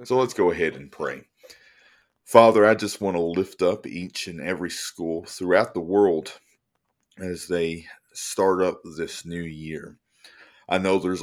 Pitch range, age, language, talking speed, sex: 85-95 Hz, 40-59, English, 160 wpm, male